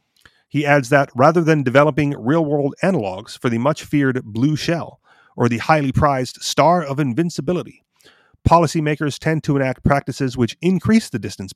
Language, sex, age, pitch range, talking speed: English, male, 30-49, 120-150 Hz, 145 wpm